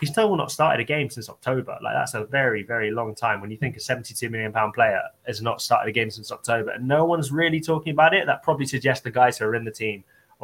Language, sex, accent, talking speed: English, male, British, 270 wpm